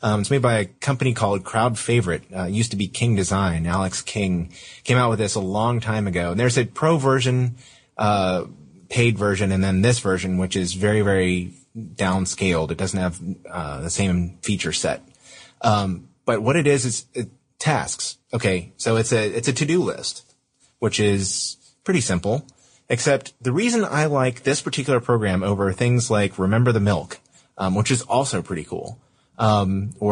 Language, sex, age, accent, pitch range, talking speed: English, male, 30-49, American, 95-125 Hz, 185 wpm